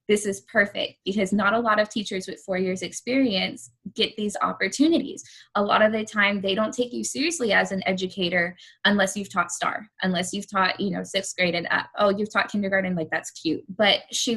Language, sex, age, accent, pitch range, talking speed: English, female, 10-29, American, 180-210 Hz, 215 wpm